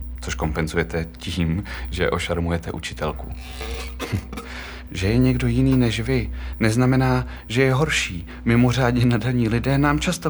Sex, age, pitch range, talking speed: male, 30-49, 80-115 Hz, 120 wpm